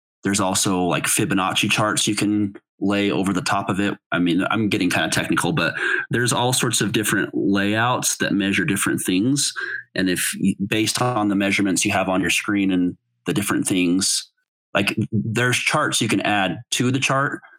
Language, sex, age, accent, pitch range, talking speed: English, male, 30-49, American, 90-115 Hz, 190 wpm